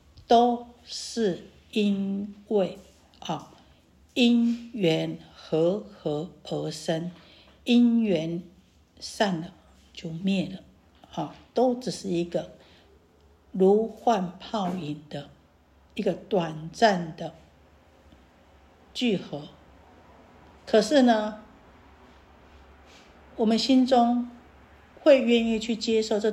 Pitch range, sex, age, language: 165-235 Hz, female, 50-69, Chinese